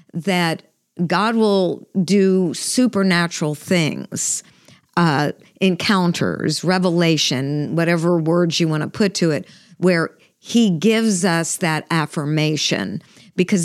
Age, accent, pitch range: 50-69, American, 170-205 Hz